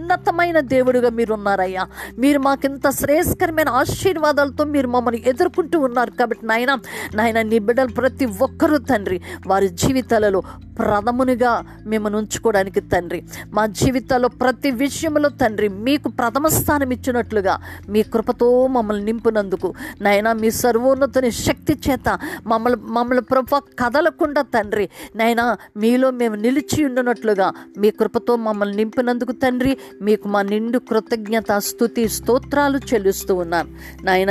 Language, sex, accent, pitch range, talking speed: Telugu, female, native, 210-265 Hz, 115 wpm